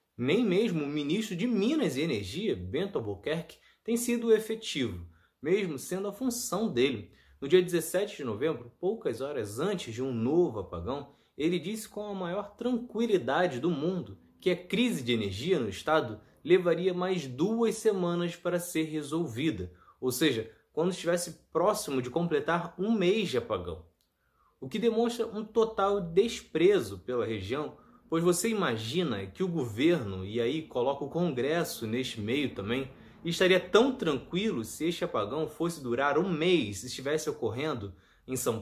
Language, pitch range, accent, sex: Portuguese, 120-190 Hz, Brazilian, male